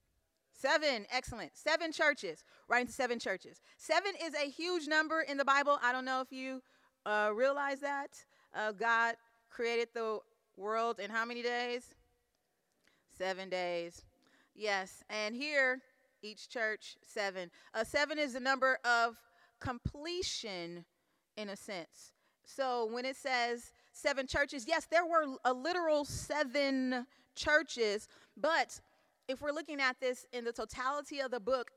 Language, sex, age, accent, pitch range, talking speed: English, female, 40-59, American, 225-285 Hz, 145 wpm